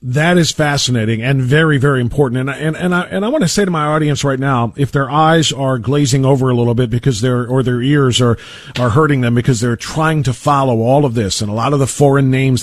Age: 40-59